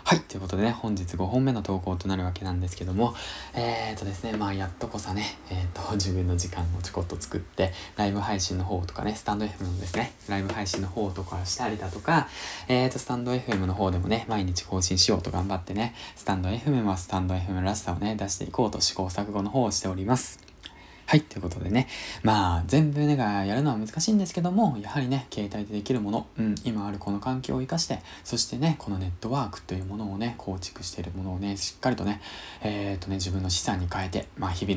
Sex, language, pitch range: male, Japanese, 95-115 Hz